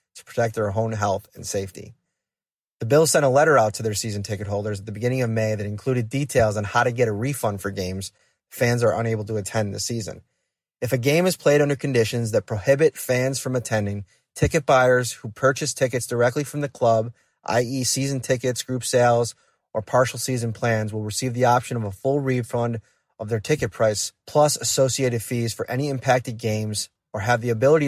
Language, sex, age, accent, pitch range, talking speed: English, male, 30-49, American, 110-130 Hz, 200 wpm